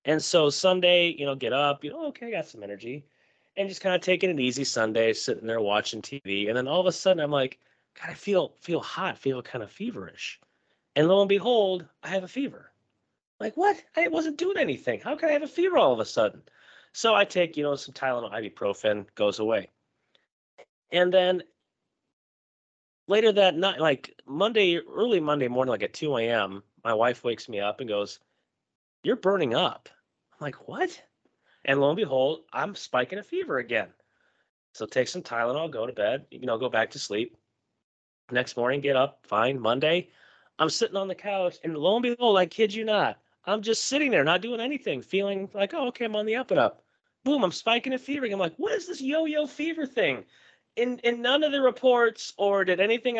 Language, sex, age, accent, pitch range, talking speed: English, male, 30-49, American, 140-235 Hz, 210 wpm